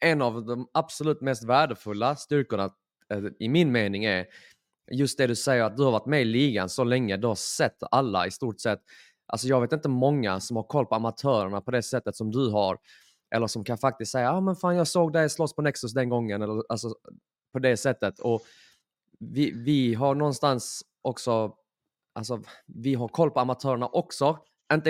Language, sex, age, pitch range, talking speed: Swedish, male, 20-39, 115-140 Hz, 200 wpm